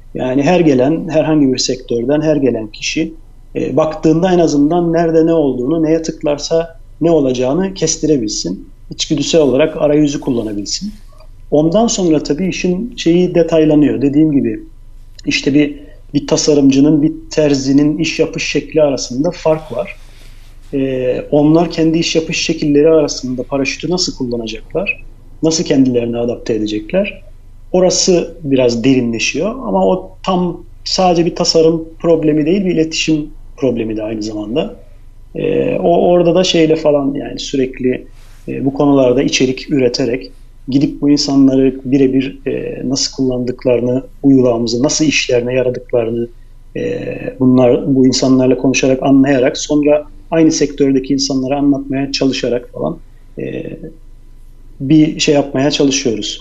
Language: Turkish